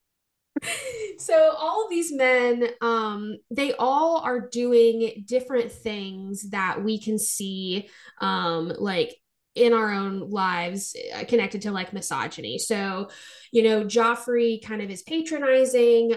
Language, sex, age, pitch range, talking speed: English, female, 10-29, 205-245 Hz, 125 wpm